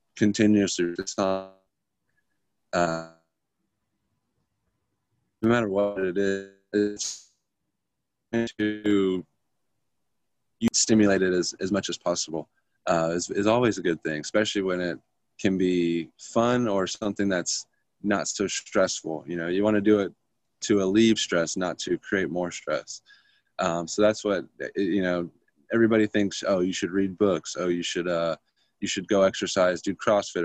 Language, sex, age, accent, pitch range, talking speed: English, male, 20-39, American, 90-110 Hz, 140 wpm